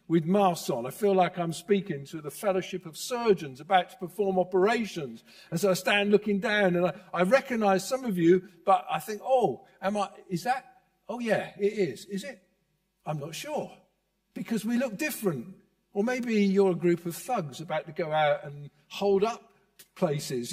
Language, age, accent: English, 50-69, British